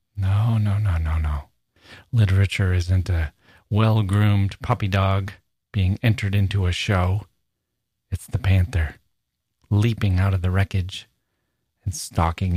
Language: English